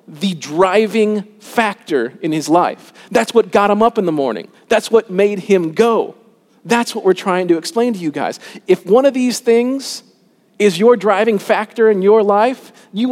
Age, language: 40-59, English